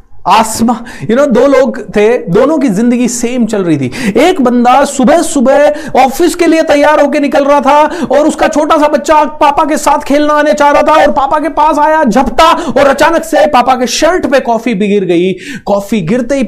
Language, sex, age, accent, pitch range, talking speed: Hindi, male, 30-49, native, 180-240 Hz, 200 wpm